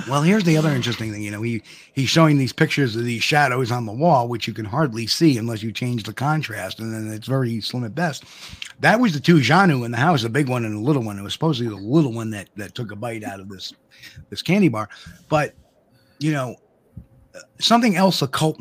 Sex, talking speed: male, 240 wpm